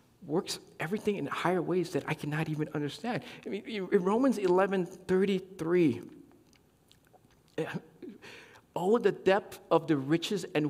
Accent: American